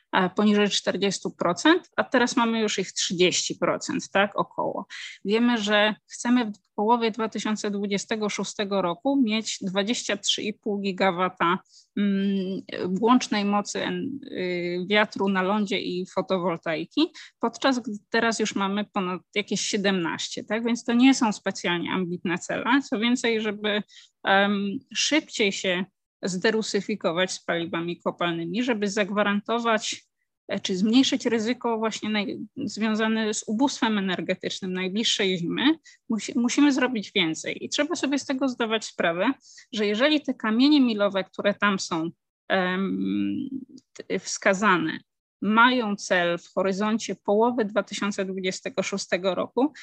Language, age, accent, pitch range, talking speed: Polish, 20-39, native, 195-240 Hz, 110 wpm